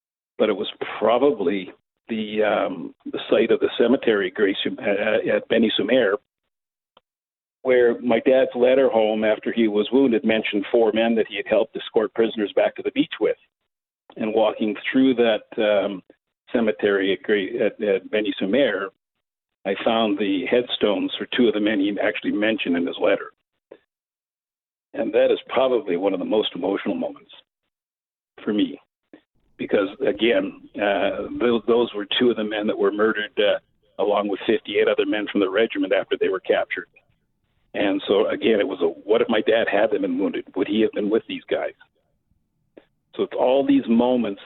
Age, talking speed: 50-69, 170 wpm